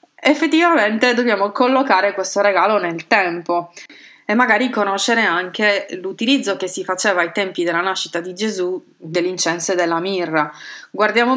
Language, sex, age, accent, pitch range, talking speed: Italian, female, 20-39, native, 180-215 Hz, 135 wpm